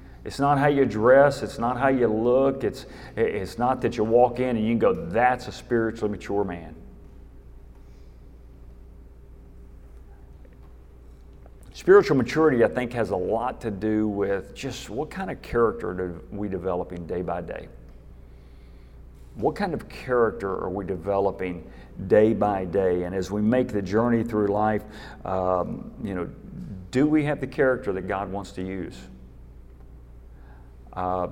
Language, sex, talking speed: English, male, 150 wpm